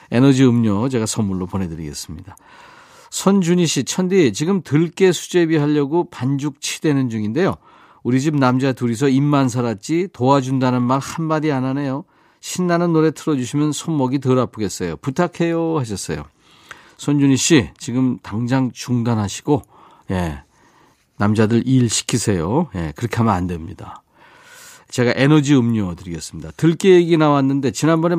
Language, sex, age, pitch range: Korean, male, 40-59, 115-160 Hz